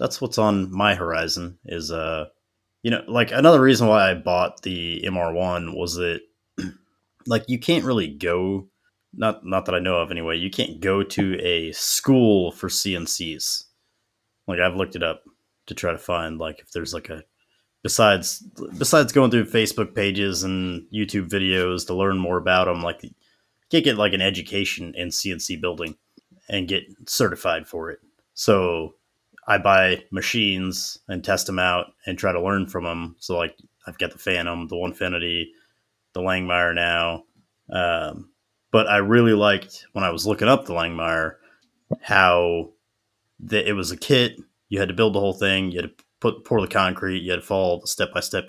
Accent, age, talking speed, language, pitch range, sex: American, 30-49, 180 wpm, English, 85-105 Hz, male